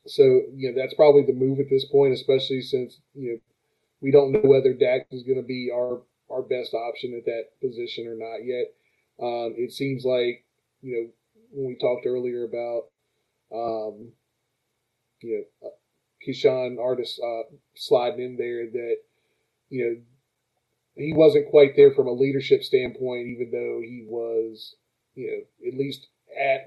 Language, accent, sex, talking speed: English, American, male, 165 wpm